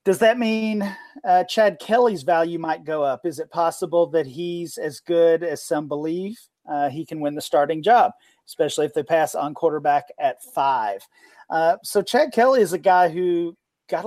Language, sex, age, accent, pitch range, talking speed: English, male, 40-59, American, 150-180 Hz, 190 wpm